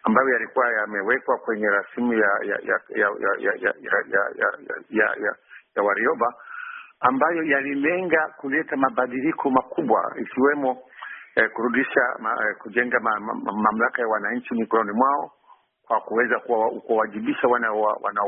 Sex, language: male, Swahili